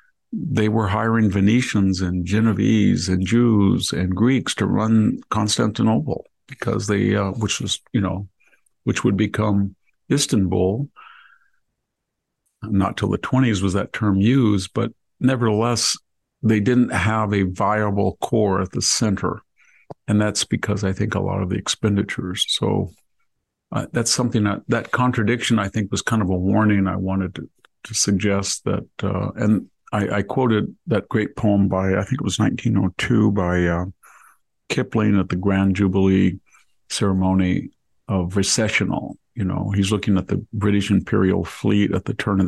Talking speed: 155 wpm